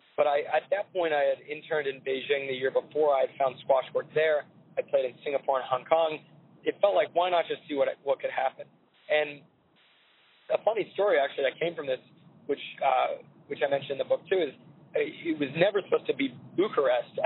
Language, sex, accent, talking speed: English, male, American, 220 wpm